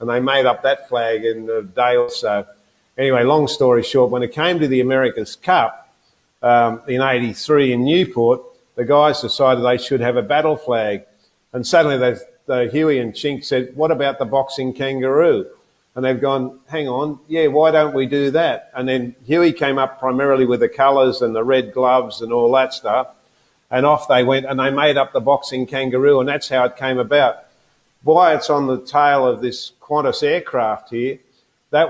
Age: 50-69